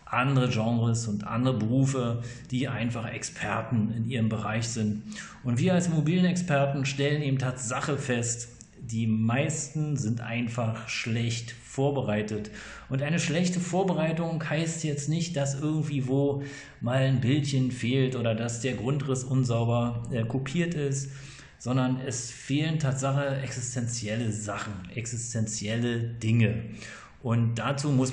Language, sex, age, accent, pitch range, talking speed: German, male, 40-59, German, 120-145 Hz, 125 wpm